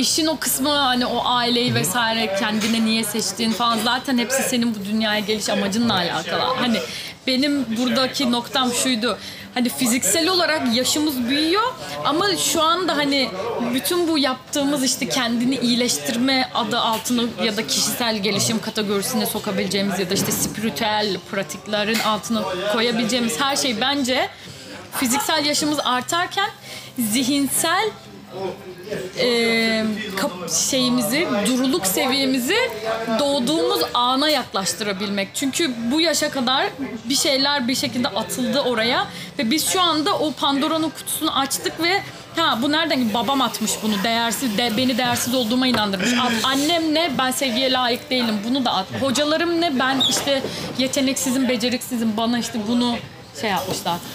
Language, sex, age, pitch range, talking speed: Turkish, female, 30-49, 230-280 Hz, 135 wpm